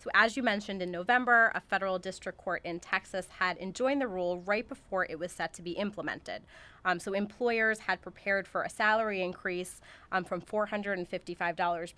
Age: 30-49